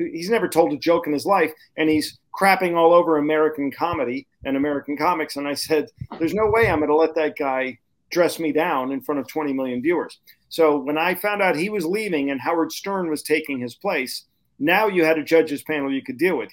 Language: English